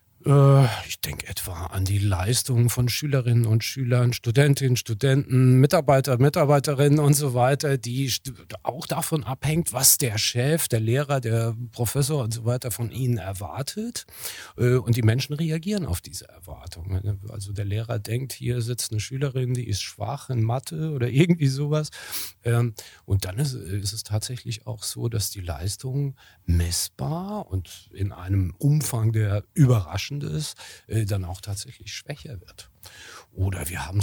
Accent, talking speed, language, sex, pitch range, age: German, 145 wpm, German, male, 105-145 Hz, 40-59